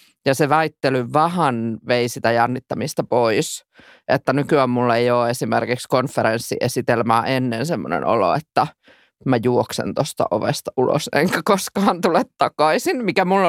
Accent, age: native, 20-39